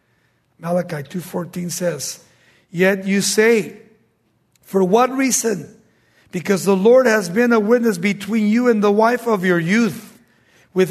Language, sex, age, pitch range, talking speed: English, male, 60-79, 170-220 Hz, 140 wpm